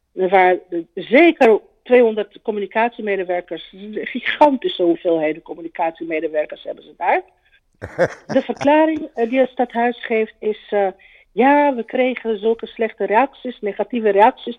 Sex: female